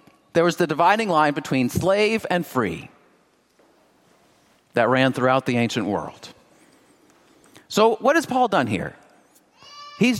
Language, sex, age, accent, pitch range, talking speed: English, male, 40-59, American, 145-230 Hz, 130 wpm